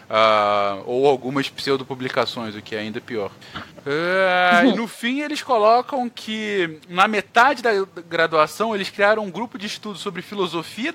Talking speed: 150 wpm